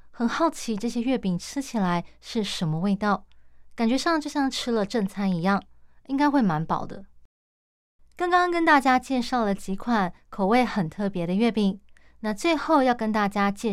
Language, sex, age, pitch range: Chinese, female, 20-39, 195-255 Hz